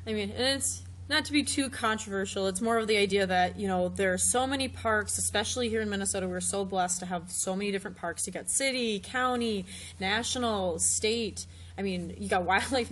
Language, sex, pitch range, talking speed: English, female, 190-225 Hz, 210 wpm